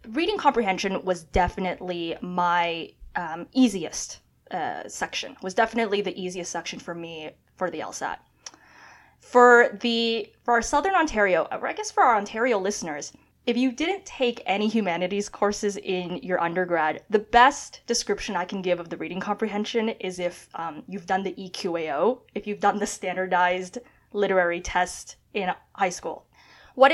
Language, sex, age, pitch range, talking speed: English, female, 20-39, 180-235 Hz, 155 wpm